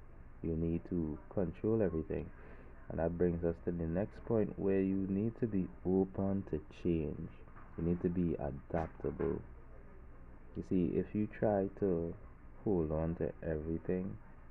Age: 20-39